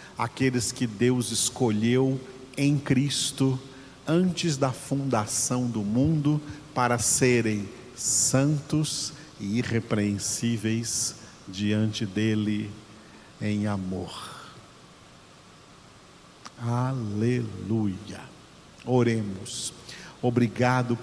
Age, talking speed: 50-69, 65 wpm